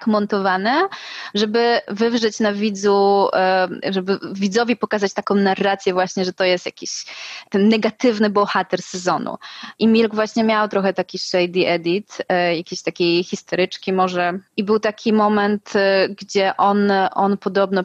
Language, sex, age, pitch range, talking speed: Polish, female, 20-39, 185-205 Hz, 130 wpm